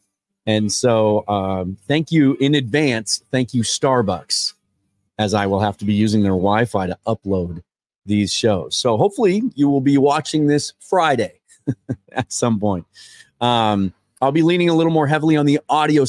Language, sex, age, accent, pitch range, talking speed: English, male, 30-49, American, 100-140 Hz, 170 wpm